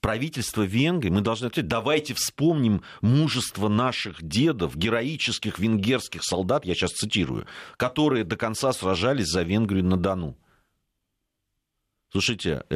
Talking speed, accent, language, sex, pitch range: 120 wpm, native, Russian, male, 85-125 Hz